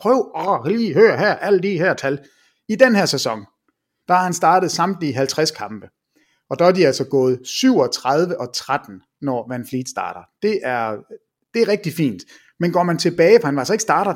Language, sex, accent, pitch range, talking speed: English, male, Danish, 150-210 Hz, 210 wpm